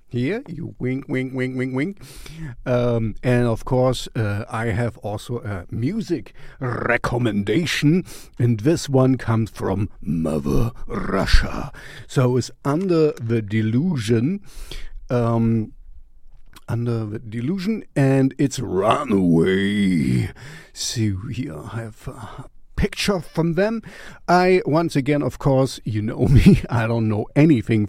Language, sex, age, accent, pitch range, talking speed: English, male, 50-69, German, 115-140 Hz, 125 wpm